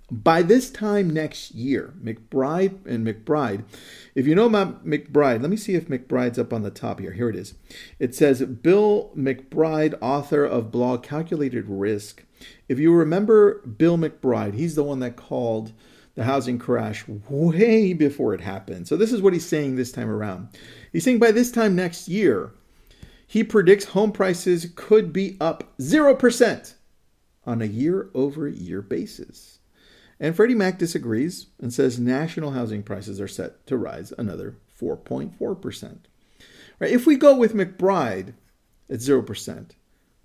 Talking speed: 155 wpm